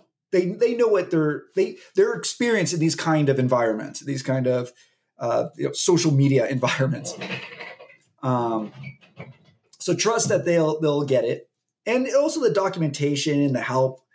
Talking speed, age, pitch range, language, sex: 165 wpm, 30-49, 135-170 Hz, English, male